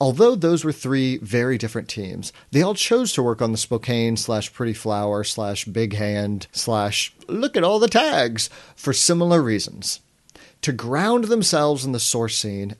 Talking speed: 175 wpm